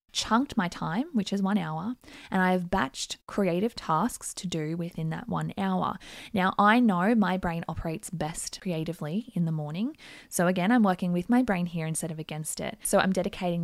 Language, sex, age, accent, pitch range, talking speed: English, female, 20-39, Australian, 165-200 Hz, 200 wpm